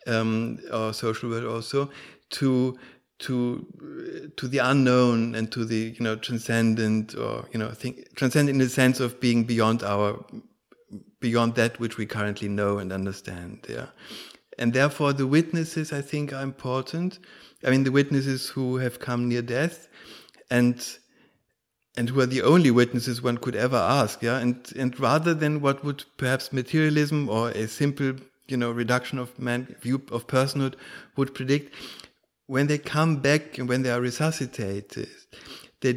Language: English